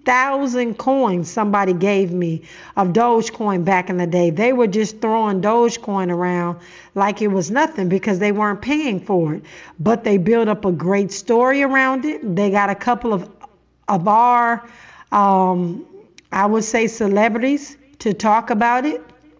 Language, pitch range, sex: English, 190-235 Hz, female